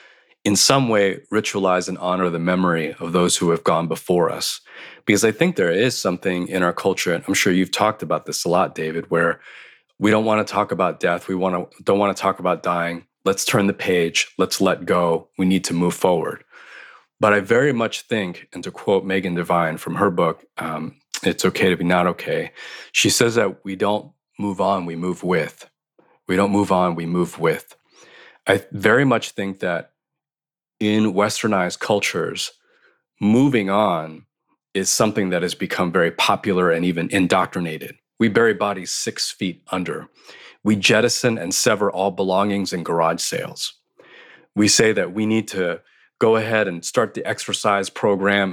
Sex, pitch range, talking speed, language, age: male, 90-105 Hz, 185 wpm, English, 30-49